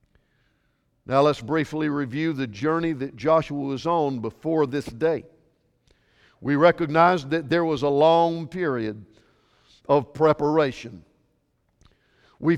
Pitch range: 150-200 Hz